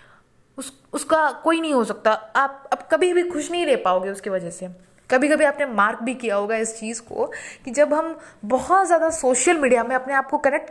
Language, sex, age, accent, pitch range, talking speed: Hindi, female, 20-39, native, 225-310 Hz, 220 wpm